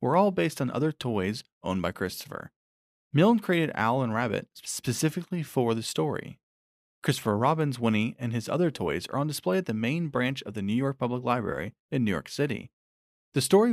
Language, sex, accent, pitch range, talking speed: English, male, American, 105-150 Hz, 190 wpm